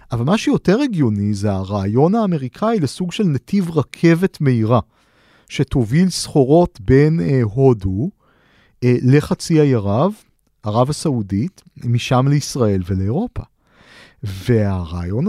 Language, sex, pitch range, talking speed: Hebrew, male, 110-165 Hz, 100 wpm